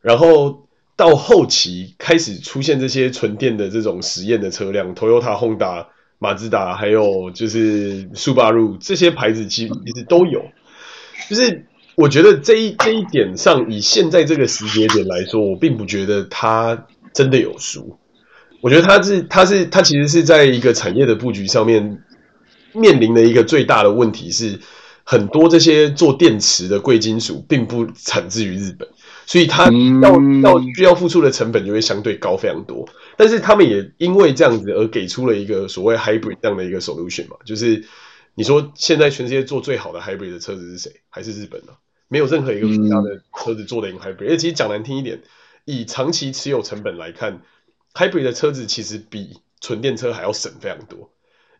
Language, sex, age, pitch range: Chinese, male, 30-49, 110-165 Hz